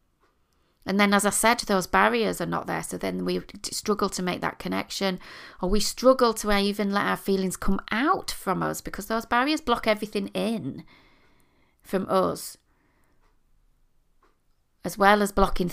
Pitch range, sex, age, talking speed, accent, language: 175-215 Hz, female, 40-59, 160 wpm, British, English